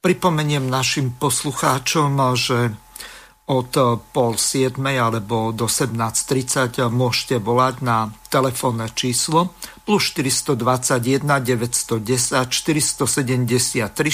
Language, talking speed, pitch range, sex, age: Slovak, 80 wpm, 120-140 Hz, male, 50-69